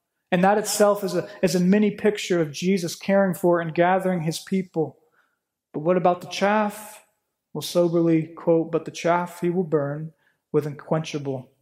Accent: American